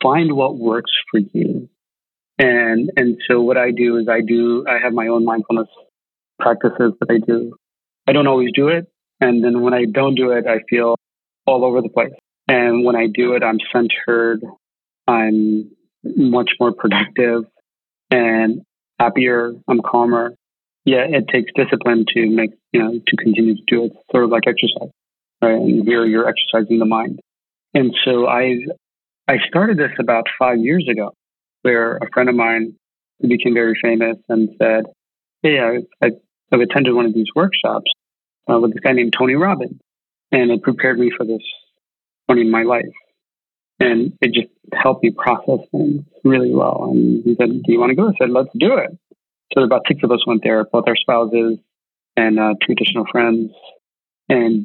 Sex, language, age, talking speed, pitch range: male, English, 30-49, 180 wpm, 115-125 Hz